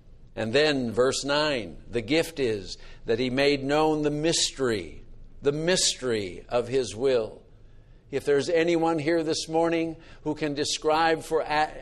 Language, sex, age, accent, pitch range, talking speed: English, male, 60-79, American, 140-165 Hz, 145 wpm